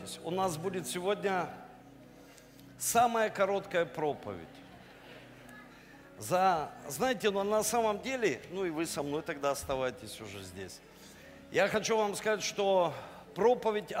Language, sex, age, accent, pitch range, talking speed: Russian, male, 50-69, native, 145-205 Hz, 120 wpm